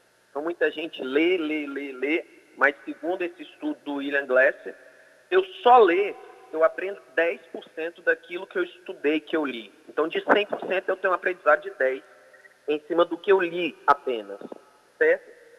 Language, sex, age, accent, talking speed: Portuguese, male, 30-49, Brazilian, 170 wpm